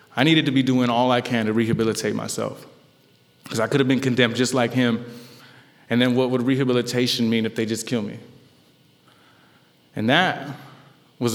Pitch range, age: 105-125 Hz, 20-39